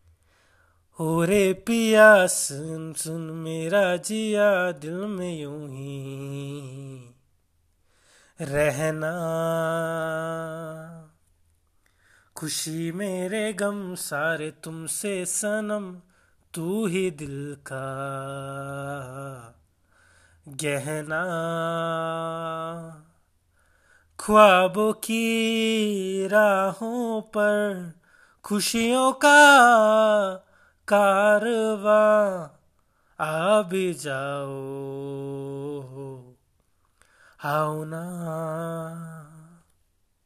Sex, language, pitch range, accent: male, Hindi, 140-200 Hz, native